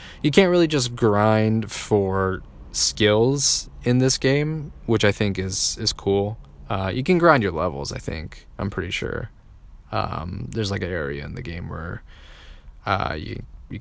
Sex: male